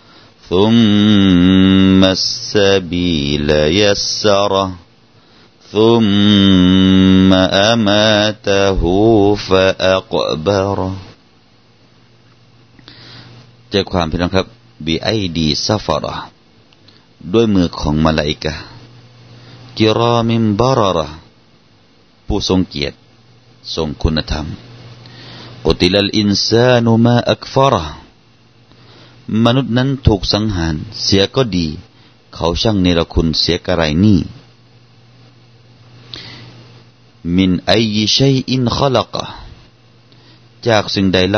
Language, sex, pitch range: Thai, male, 95-120 Hz